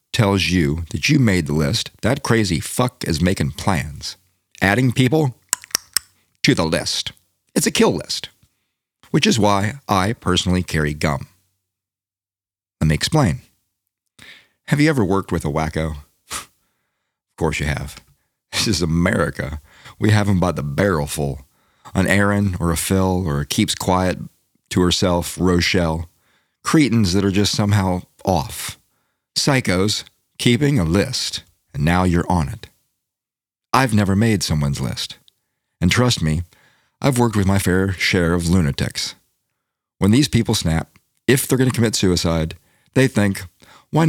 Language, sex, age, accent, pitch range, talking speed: English, male, 50-69, American, 85-110 Hz, 150 wpm